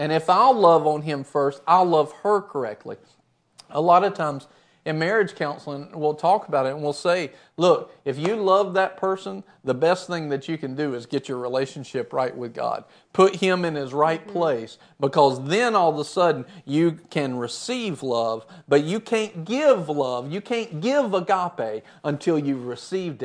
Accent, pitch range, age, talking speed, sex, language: American, 135-185 Hz, 40-59, 190 wpm, male, English